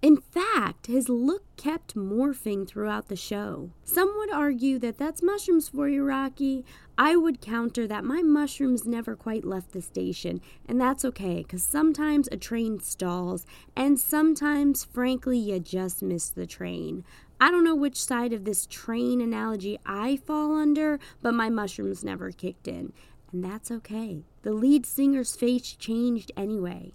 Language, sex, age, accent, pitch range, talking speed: English, female, 20-39, American, 190-275 Hz, 160 wpm